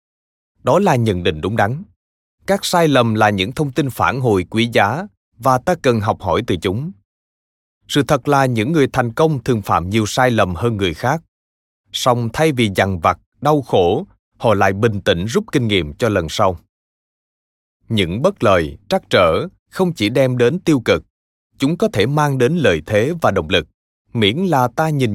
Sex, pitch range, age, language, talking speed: male, 95-145 Hz, 20-39, Vietnamese, 195 wpm